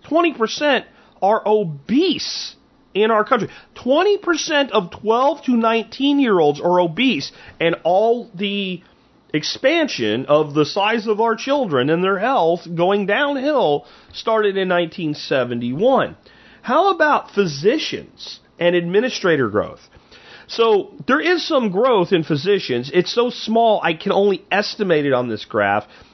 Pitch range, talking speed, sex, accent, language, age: 140-215 Hz, 125 wpm, male, American, English, 40-59